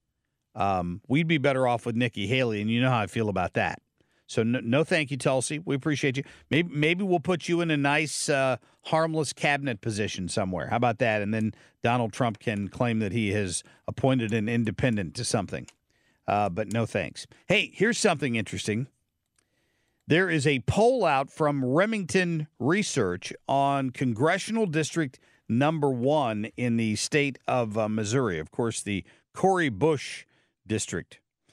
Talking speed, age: 170 wpm, 50-69